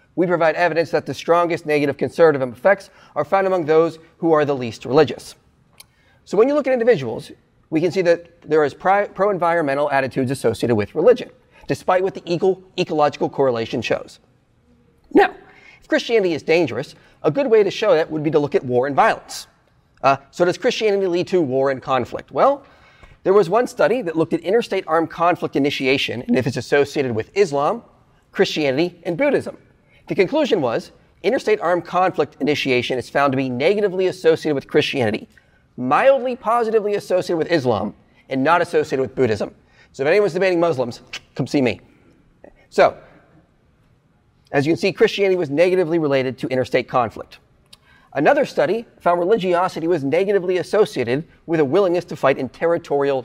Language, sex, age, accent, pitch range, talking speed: English, male, 30-49, American, 140-190 Hz, 170 wpm